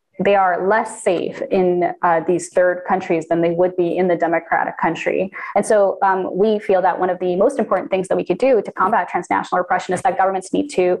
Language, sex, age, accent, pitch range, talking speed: English, female, 20-39, American, 175-210 Hz, 230 wpm